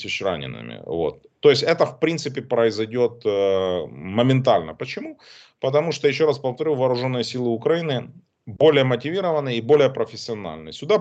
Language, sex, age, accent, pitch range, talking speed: Russian, male, 30-49, native, 105-145 Hz, 130 wpm